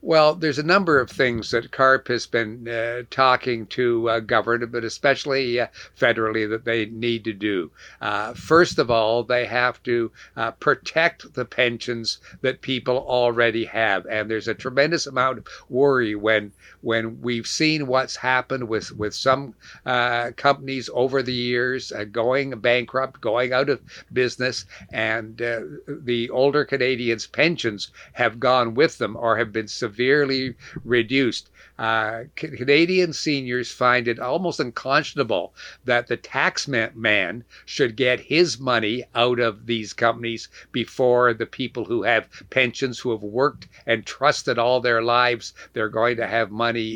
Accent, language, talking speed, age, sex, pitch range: American, English, 155 wpm, 60-79, male, 115-130 Hz